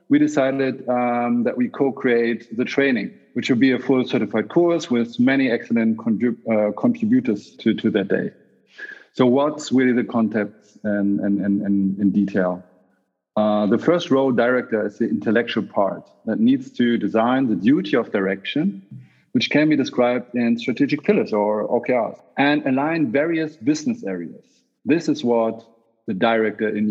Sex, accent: male, German